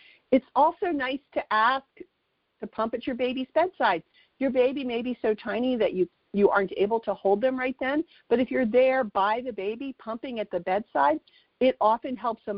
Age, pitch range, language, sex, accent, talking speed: 50-69, 205-265 Hz, English, female, American, 200 wpm